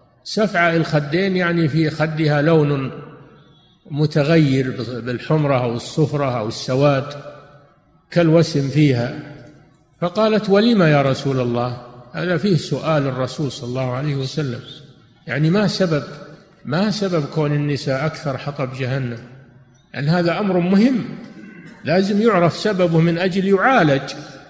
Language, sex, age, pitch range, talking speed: Arabic, male, 50-69, 135-165 Hz, 115 wpm